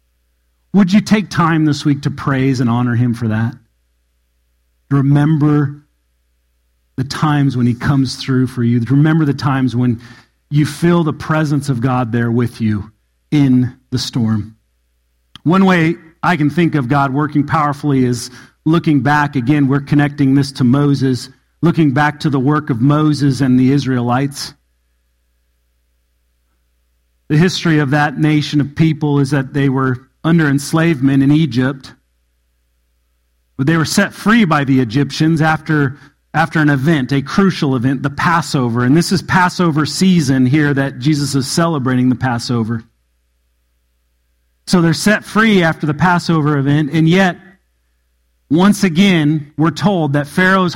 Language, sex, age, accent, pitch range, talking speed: English, male, 40-59, American, 110-160 Hz, 150 wpm